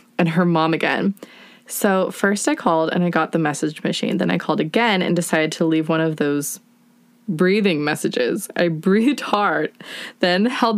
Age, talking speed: 20-39, 180 wpm